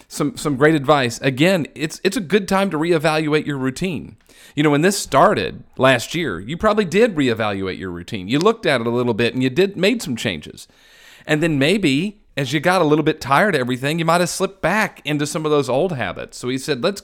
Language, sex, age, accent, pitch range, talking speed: English, male, 40-59, American, 110-160 Hz, 235 wpm